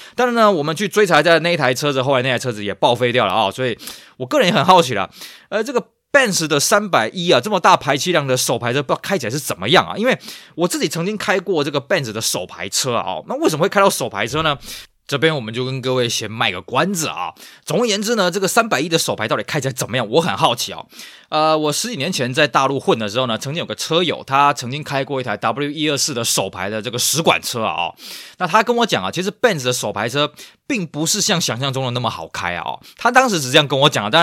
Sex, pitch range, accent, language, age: male, 130-185 Hz, native, Chinese, 20-39